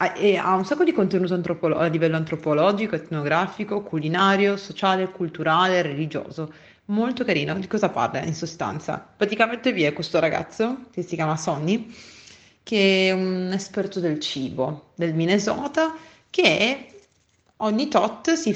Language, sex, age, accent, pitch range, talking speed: Italian, female, 30-49, native, 170-215 Hz, 140 wpm